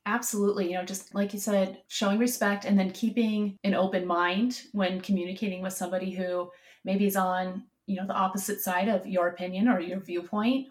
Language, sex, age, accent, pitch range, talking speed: English, female, 30-49, American, 185-215 Hz, 190 wpm